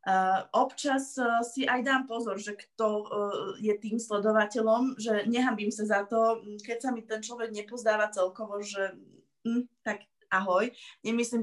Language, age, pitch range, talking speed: Slovak, 20-39, 195-235 Hz, 155 wpm